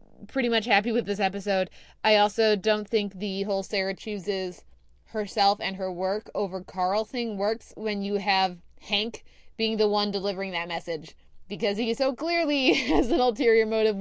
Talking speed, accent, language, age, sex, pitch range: 170 wpm, American, English, 20-39, female, 185-230 Hz